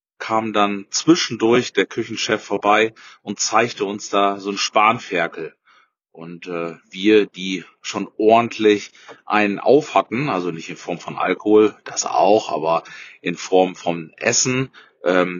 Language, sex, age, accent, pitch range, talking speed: German, male, 30-49, German, 100-115 Hz, 140 wpm